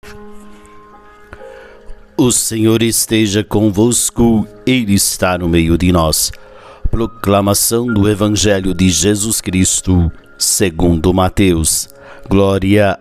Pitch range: 90-105 Hz